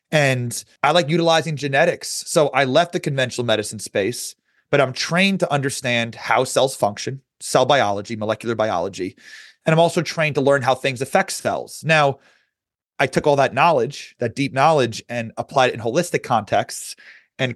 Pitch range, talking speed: 125-160 Hz, 170 wpm